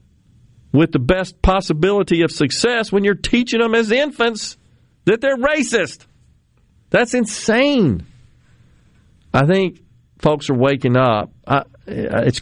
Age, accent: 50-69, American